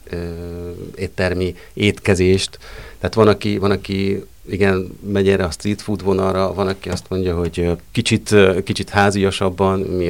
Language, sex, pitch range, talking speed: Hungarian, male, 85-100 Hz, 135 wpm